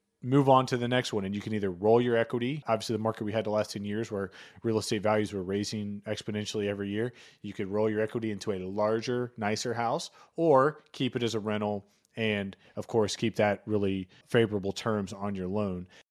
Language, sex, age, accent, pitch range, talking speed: English, male, 30-49, American, 100-120 Hz, 215 wpm